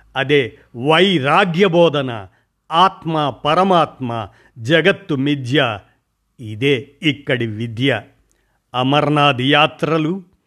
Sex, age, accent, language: male, 50-69, native, Telugu